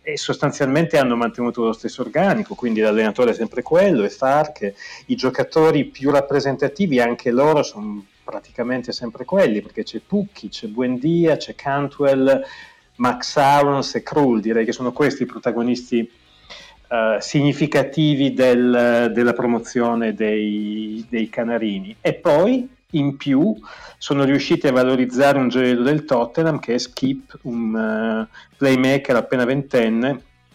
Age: 40-59